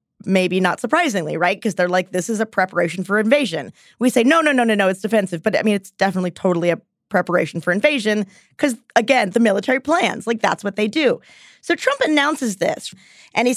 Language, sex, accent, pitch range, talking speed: English, female, American, 205-275 Hz, 210 wpm